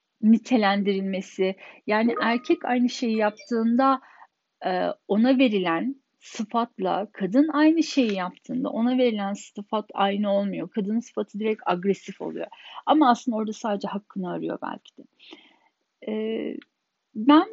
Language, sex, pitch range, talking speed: Turkish, female, 205-260 Hz, 110 wpm